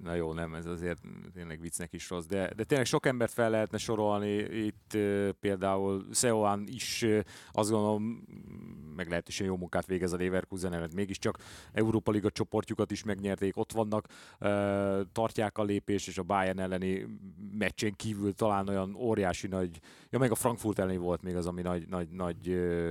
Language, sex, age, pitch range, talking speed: Hungarian, male, 30-49, 95-110 Hz, 180 wpm